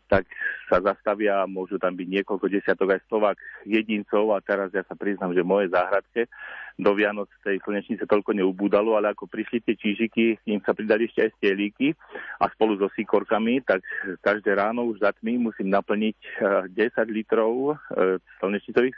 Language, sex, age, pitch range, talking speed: Slovak, male, 40-59, 100-115 Hz, 160 wpm